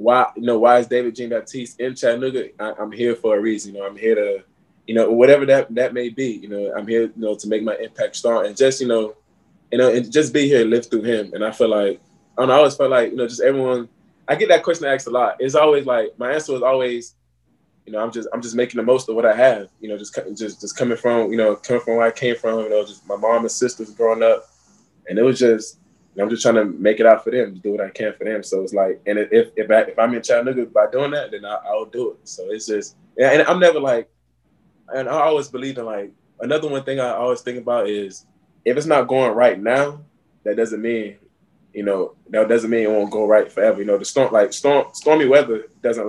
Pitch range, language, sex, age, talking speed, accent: 110-135 Hz, English, male, 20-39, 270 wpm, American